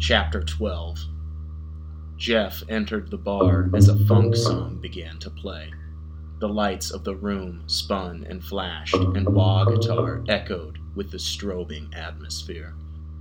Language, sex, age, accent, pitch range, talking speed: English, male, 30-49, American, 80-100 Hz, 130 wpm